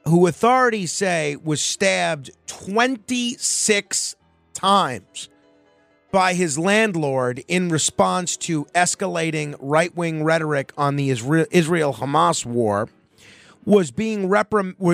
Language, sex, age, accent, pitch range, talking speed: English, male, 40-59, American, 130-175 Hz, 85 wpm